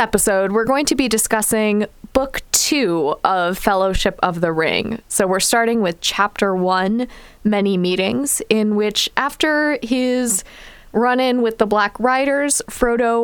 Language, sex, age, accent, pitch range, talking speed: English, female, 20-39, American, 195-255 Hz, 140 wpm